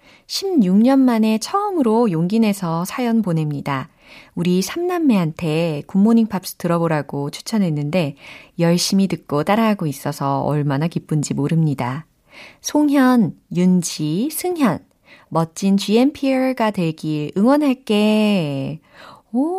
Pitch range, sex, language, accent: 160-235 Hz, female, Korean, native